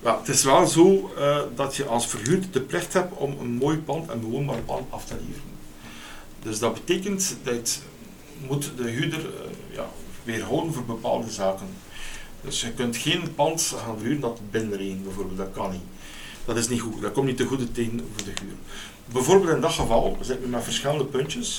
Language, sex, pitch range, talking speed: Dutch, male, 105-140 Hz, 205 wpm